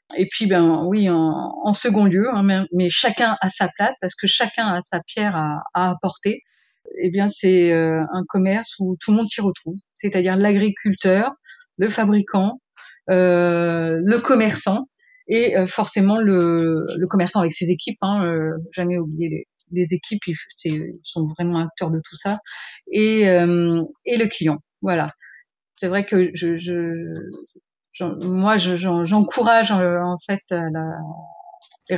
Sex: female